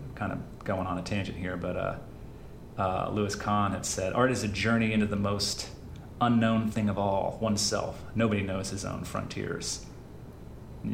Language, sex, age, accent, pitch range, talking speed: English, male, 30-49, American, 100-115 Hz, 175 wpm